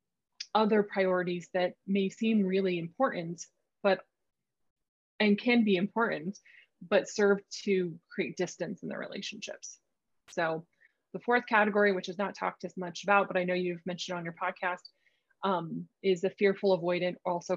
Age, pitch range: 20-39, 180-215 Hz